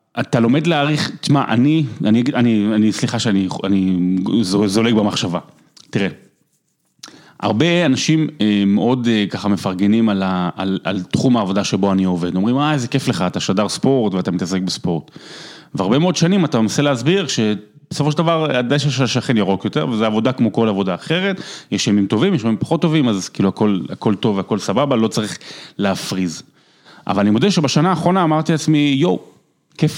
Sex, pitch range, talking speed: male, 100-145 Hz, 170 wpm